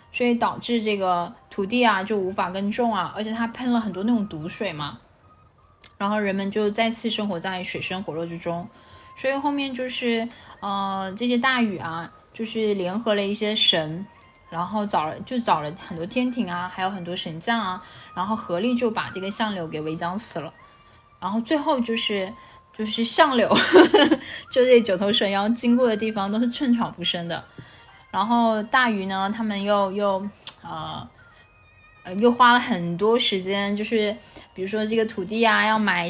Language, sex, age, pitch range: Chinese, female, 10-29, 185-235 Hz